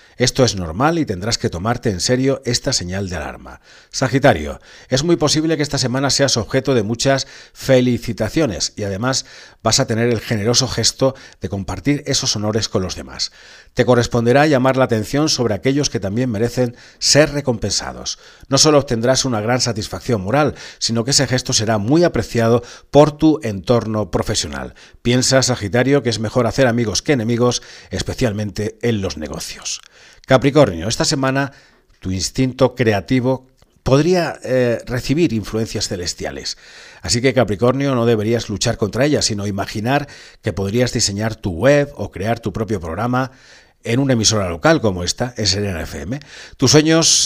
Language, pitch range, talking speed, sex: Spanish, 105-135 Hz, 155 wpm, male